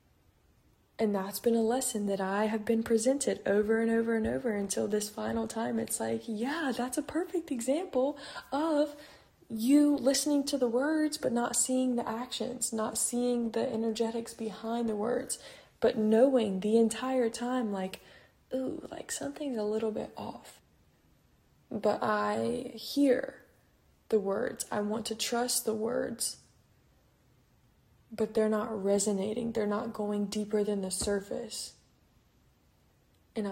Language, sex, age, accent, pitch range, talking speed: English, female, 20-39, American, 210-245 Hz, 145 wpm